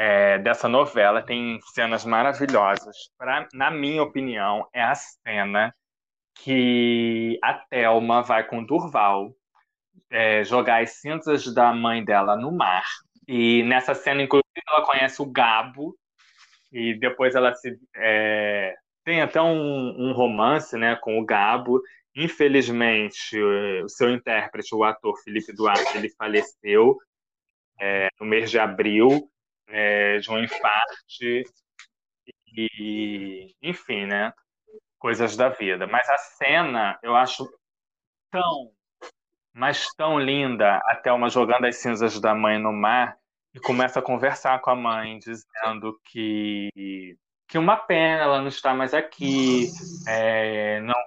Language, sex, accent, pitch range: Portuguese, male, Brazilian, 110-135 Hz